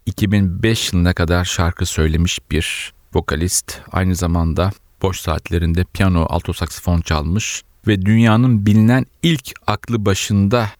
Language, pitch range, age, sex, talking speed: Turkish, 90-110 Hz, 40-59, male, 115 wpm